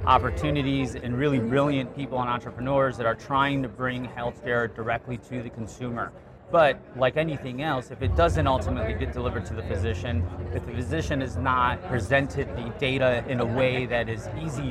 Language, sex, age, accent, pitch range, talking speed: English, male, 30-49, American, 110-130 Hz, 180 wpm